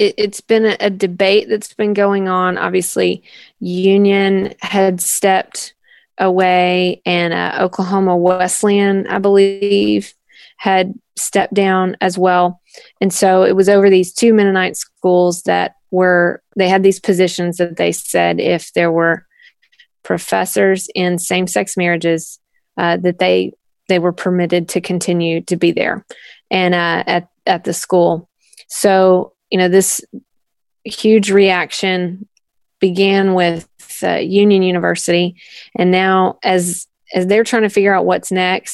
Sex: female